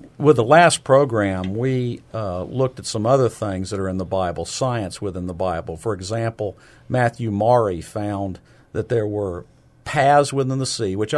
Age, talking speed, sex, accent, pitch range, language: 50-69, 175 wpm, male, American, 100-140 Hz, English